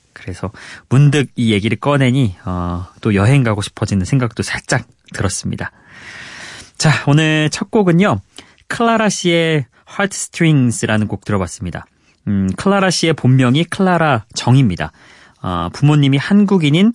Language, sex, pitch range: Korean, male, 110-165 Hz